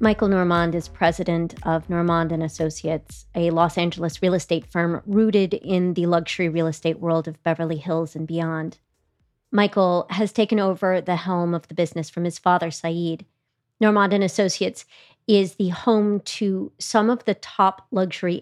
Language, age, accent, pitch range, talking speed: English, 30-49, American, 165-195 Hz, 160 wpm